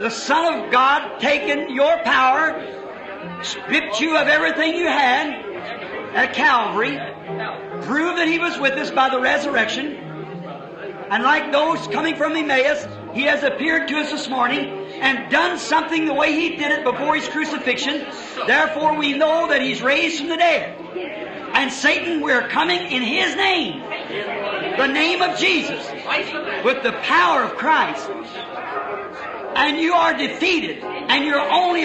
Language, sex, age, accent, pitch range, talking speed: English, male, 50-69, American, 275-325 Hz, 150 wpm